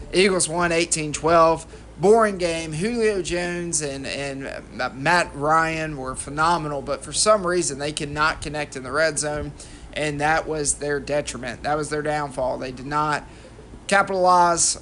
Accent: American